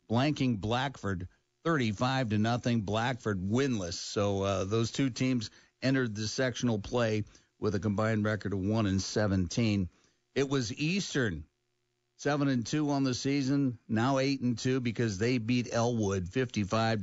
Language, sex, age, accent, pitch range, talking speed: English, male, 50-69, American, 100-120 Hz, 150 wpm